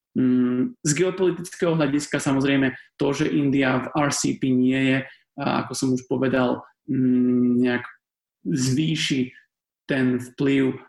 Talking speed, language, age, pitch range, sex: 105 wpm, Czech, 30-49, 135-170 Hz, male